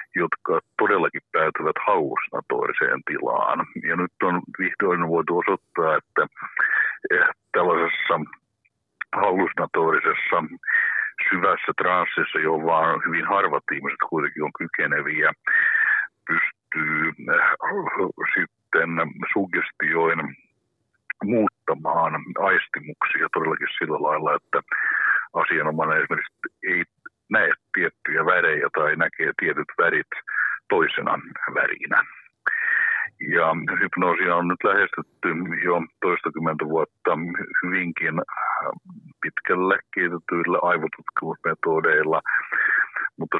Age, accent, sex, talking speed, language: 60-79, native, male, 80 wpm, Finnish